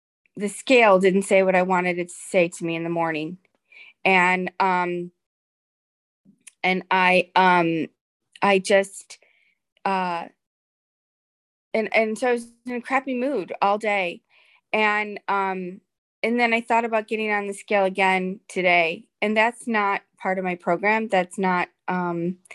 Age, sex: 20-39, female